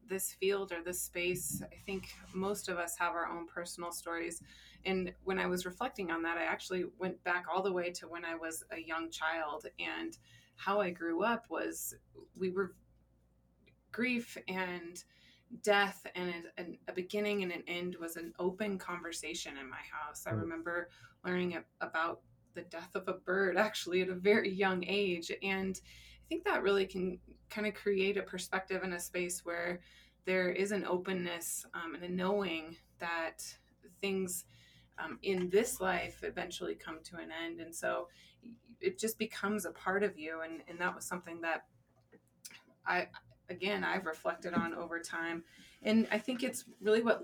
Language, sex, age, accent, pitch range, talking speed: English, female, 20-39, American, 170-195 Hz, 175 wpm